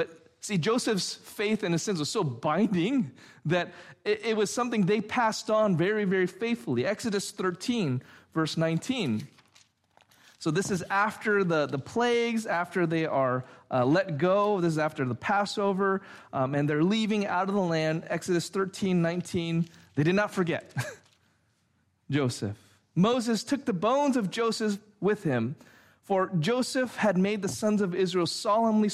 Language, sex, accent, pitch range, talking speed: English, male, American, 160-215 Hz, 155 wpm